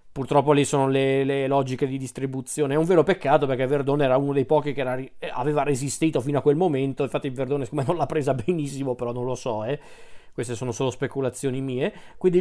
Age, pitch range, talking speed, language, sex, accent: 40-59, 125-150 Hz, 205 wpm, Italian, male, native